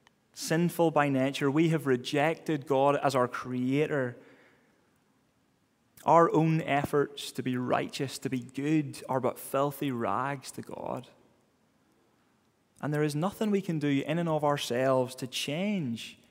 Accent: British